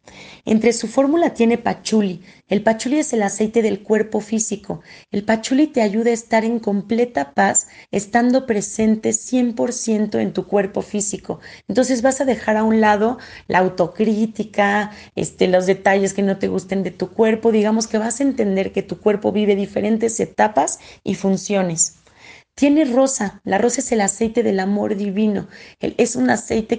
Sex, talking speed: female, 165 wpm